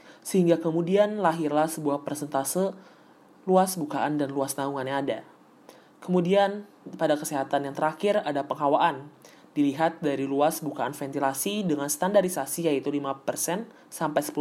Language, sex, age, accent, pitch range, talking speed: Indonesian, male, 20-39, native, 140-175 Hz, 115 wpm